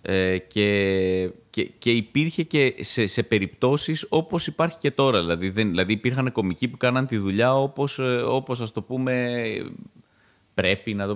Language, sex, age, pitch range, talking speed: Greek, male, 30-49, 90-125 Hz, 155 wpm